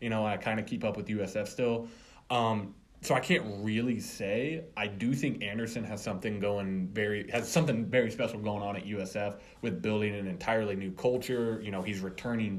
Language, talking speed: English, 200 wpm